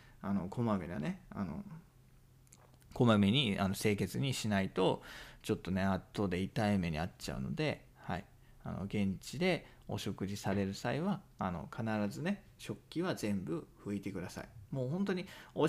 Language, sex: Japanese, male